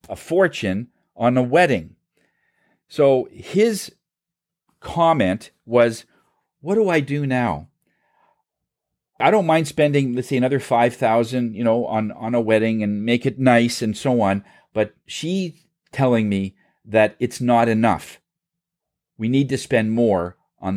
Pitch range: 115-165 Hz